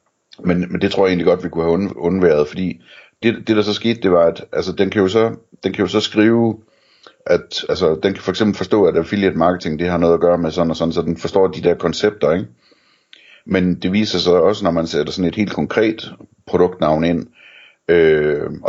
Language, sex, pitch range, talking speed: Danish, male, 85-105 Hz, 230 wpm